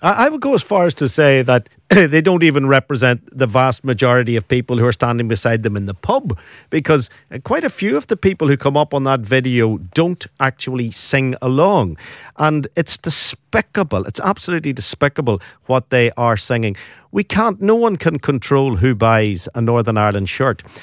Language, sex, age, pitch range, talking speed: English, male, 50-69, 115-140 Hz, 185 wpm